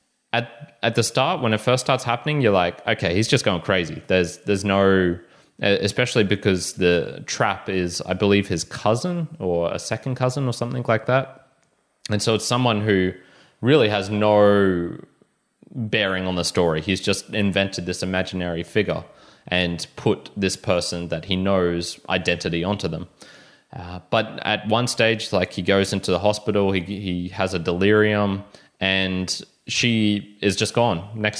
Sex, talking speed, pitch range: male, 165 wpm, 90-105 Hz